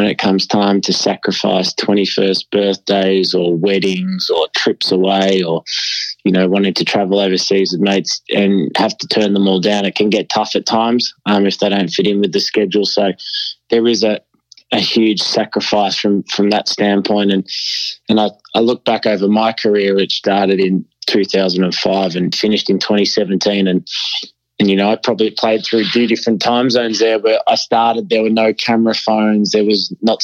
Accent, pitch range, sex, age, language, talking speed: Australian, 95-105 Hz, male, 20-39, English, 190 wpm